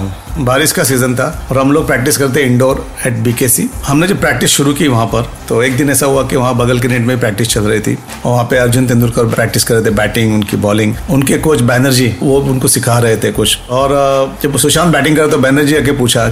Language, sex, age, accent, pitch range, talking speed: Hindi, male, 40-59, native, 115-145 Hz, 240 wpm